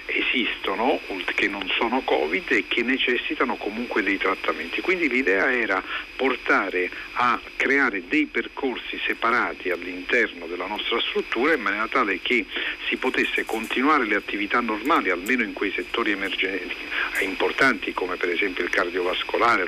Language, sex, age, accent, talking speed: Italian, male, 50-69, native, 135 wpm